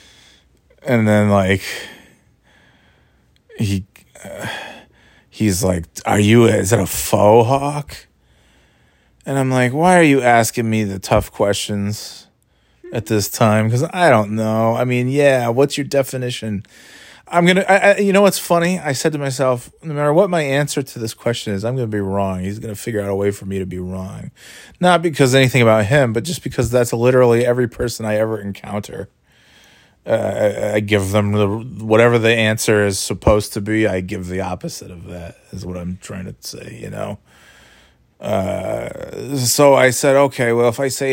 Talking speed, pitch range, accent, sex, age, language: 185 wpm, 105-130 Hz, American, male, 30-49, English